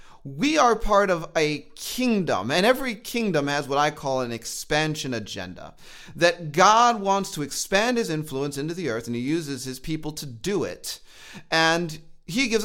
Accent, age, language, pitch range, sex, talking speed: American, 30-49, English, 150-215 Hz, male, 175 wpm